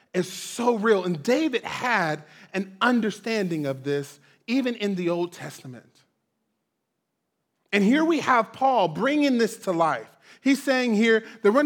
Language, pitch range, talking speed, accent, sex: English, 180-250 Hz, 150 wpm, American, male